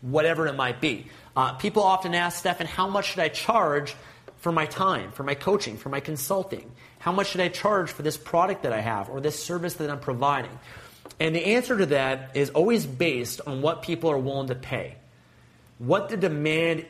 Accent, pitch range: American, 130-170 Hz